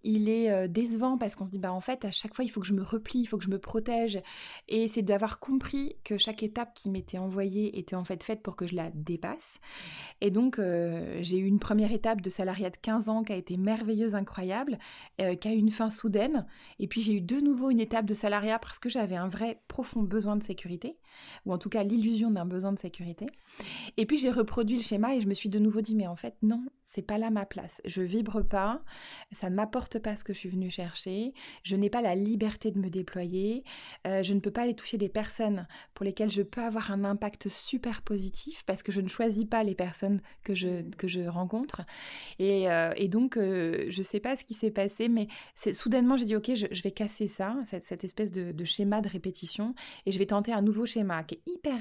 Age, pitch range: 30-49, 195-230 Hz